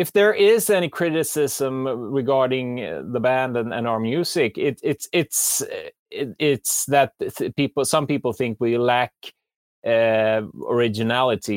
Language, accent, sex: English, Norwegian, male